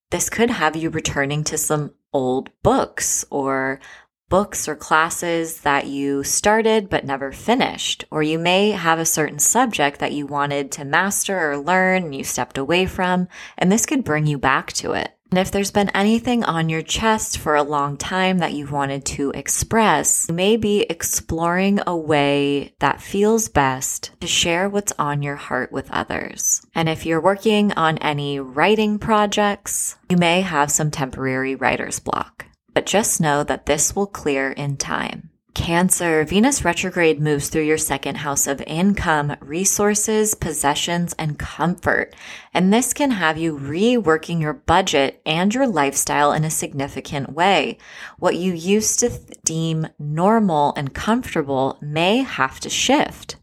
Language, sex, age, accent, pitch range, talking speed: English, female, 20-39, American, 145-195 Hz, 165 wpm